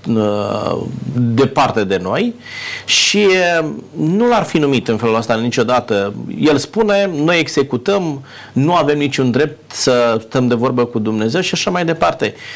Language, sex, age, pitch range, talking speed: Romanian, male, 30-49, 110-145 Hz, 145 wpm